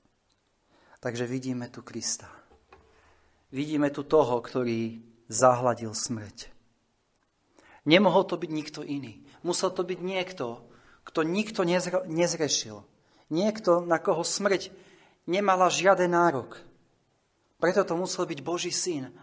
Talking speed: 110 wpm